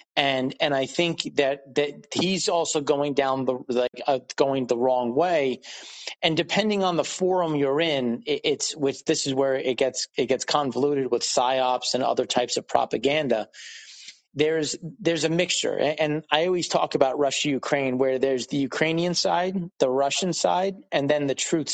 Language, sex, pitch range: English, male, 130-160 Hz